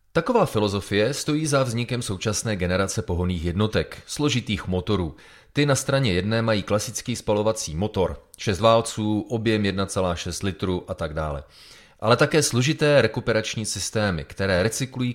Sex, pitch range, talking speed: male, 95-120 Hz, 135 wpm